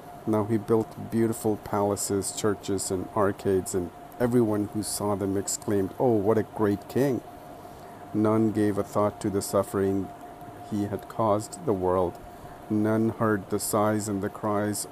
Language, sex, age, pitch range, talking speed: English, male, 50-69, 100-110 Hz, 155 wpm